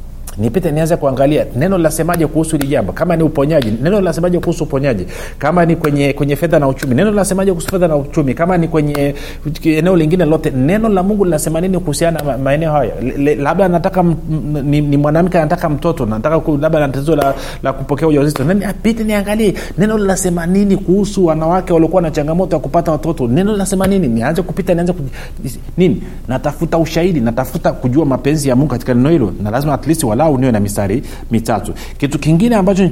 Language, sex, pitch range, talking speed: Swahili, male, 125-175 Hz, 180 wpm